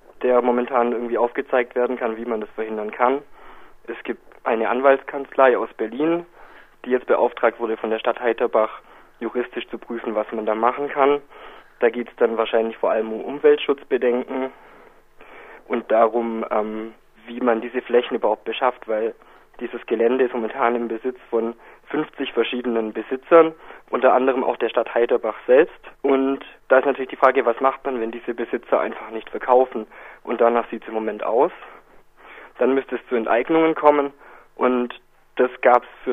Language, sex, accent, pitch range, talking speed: German, male, German, 115-130 Hz, 170 wpm